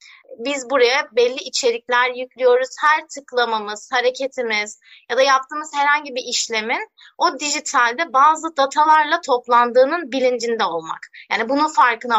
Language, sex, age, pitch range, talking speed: Turkish, female, 30-49, 250-325 Hz, 120 wpm